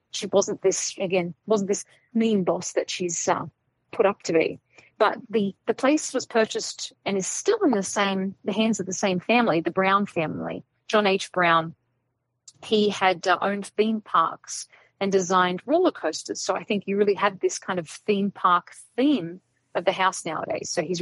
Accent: Australian